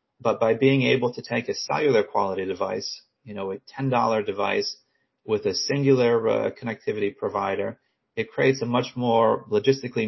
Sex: male